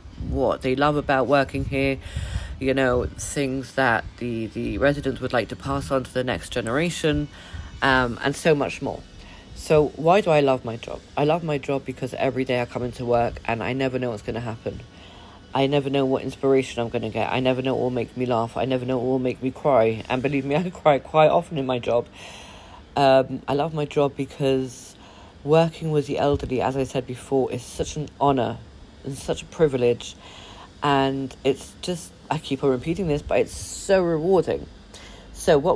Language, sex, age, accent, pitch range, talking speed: English, female, 40-59, British, 120-140 Hz, 210 wpm